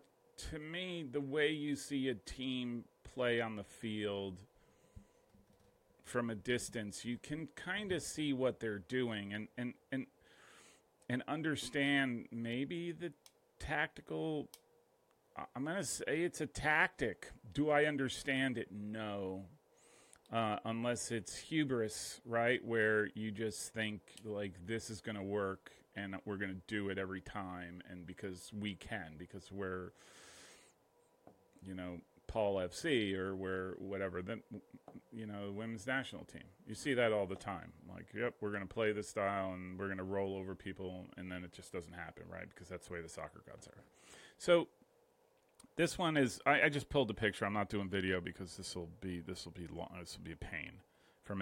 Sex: male